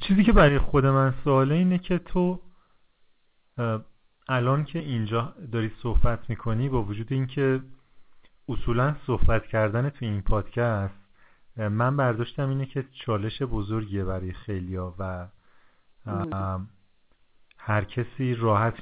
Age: 40-59